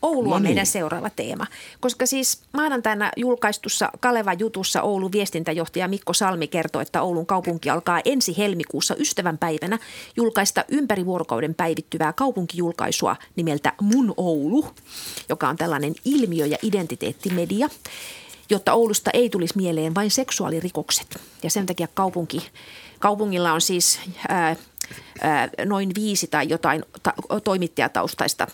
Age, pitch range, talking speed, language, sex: 30-49, 165-210 Hz, 120 wpm, Finnish, female